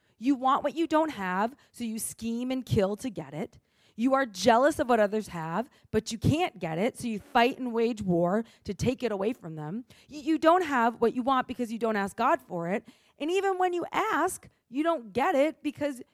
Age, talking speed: 30-49, 225 wpm